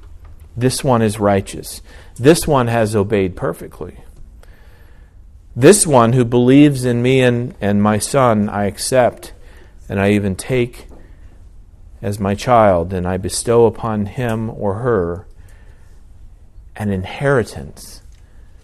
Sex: male